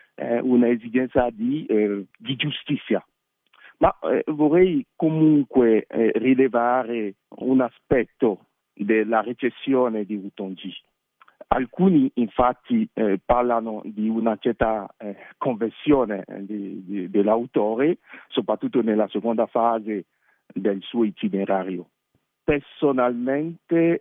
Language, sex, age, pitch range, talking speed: Italian, male, 50-69, 110-150 Hz, 95 wpm